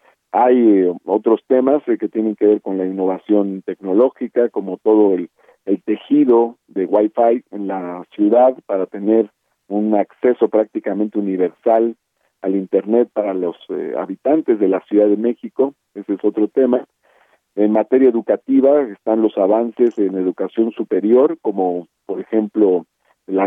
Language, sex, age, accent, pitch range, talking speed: Spanish, male, 50-69, Mexican, 100-125 Hz, 140 wpm